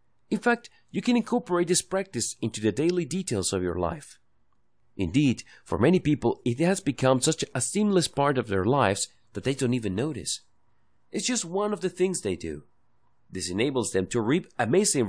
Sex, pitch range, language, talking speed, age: male, 100-165 Hz, English, 185 wpm, 30-49